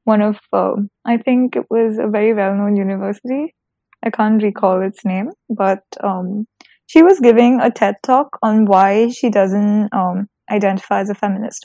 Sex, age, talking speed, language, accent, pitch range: female, 10-29, 175 wpm, English, Indian, 200-240 Hz